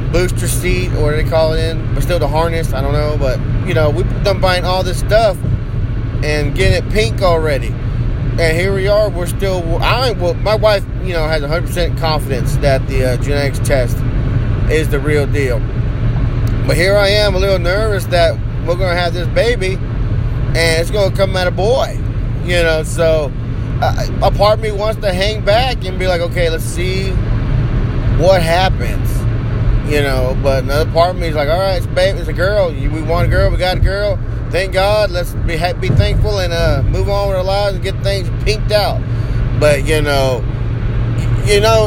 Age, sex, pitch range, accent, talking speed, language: 20-39, male, 115-130 Hz, American, 200 wpm, English